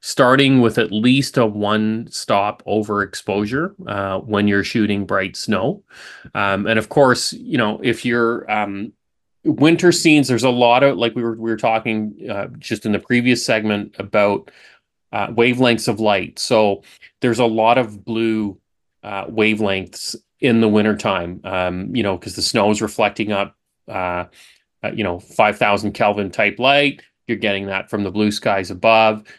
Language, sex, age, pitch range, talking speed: English, male, 30-49, 100-125 Hz, 165 wpm